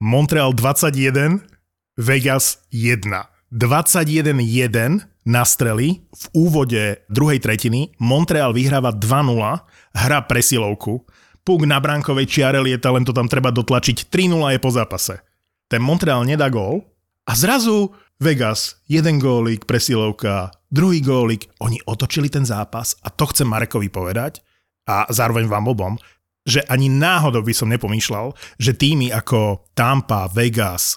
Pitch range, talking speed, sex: 115-150 Hz, 130 wpm, male